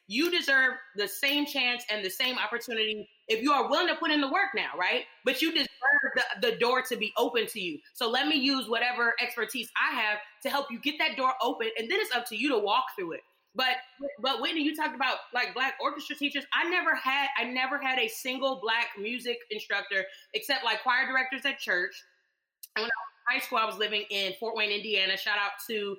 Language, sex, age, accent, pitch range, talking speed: English, female, 20-39, American, 205-275 Hz, 220 wpm